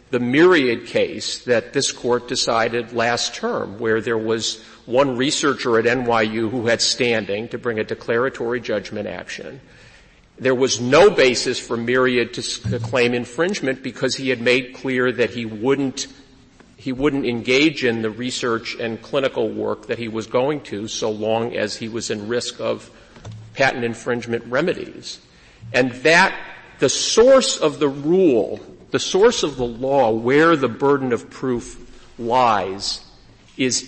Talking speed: 155 wpm